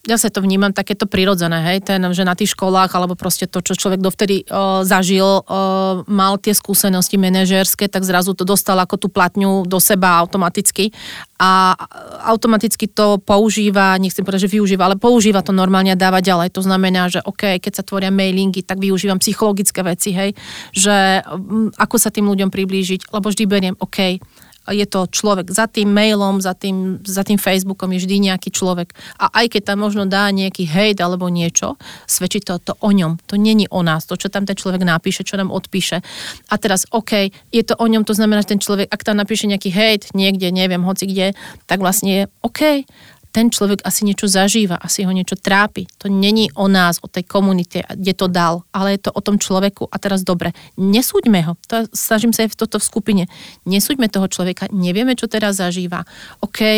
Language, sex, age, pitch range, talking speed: Slovak, female, 30-49, 185-210 Hz, 195 wpm